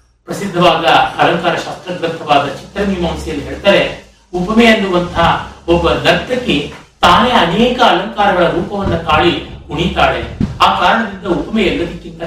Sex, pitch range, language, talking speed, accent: male, 170-235 Hz, Kannada, 100 wpm, native